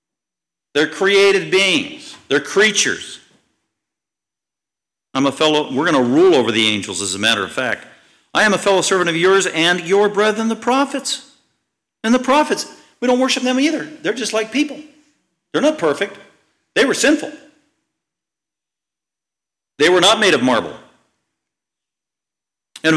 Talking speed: 150 wpm